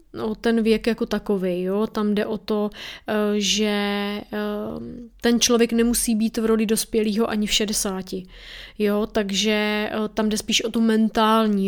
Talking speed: 150 wpm